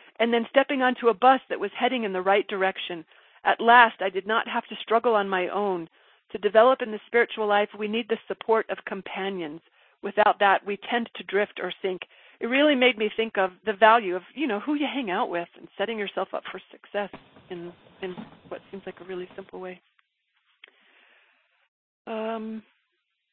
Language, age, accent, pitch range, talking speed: English, 40-59, American, 190-225 Hz, 195 wpm